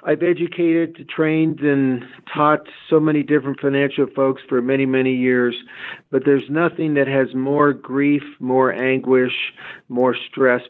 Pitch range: 130-150 Hz